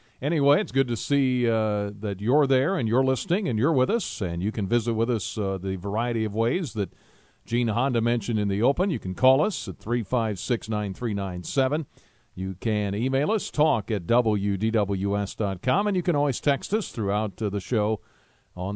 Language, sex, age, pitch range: English, male, 50-69, 105-130 Hz